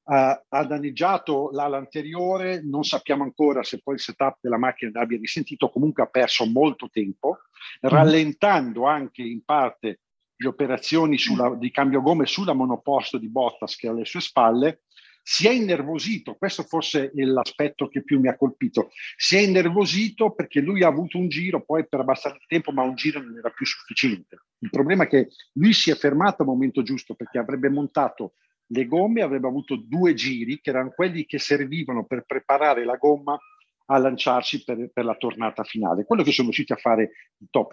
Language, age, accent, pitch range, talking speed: Italian, 50-69, native, 130-165 Hz, 185 wpm